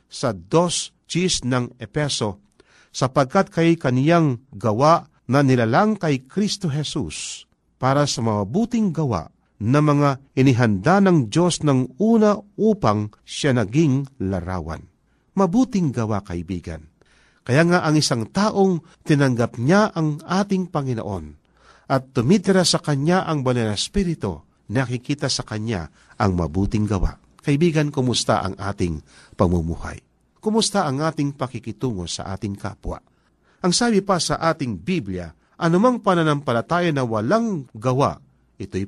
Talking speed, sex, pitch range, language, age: 120 wpm, male, 110-180 Hz, Filipino, 50-69